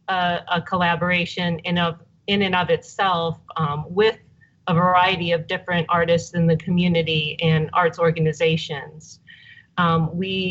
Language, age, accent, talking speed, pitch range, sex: English, 40-59, American, 130 wpm, 165-190 Hz, female